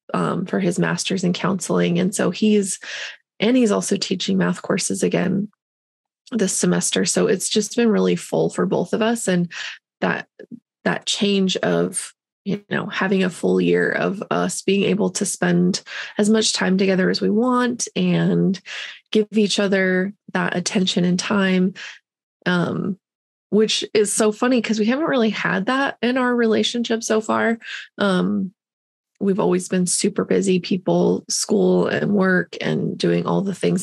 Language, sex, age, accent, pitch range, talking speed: English, female, 20-39, American, 185-220 Hz, 160 wpm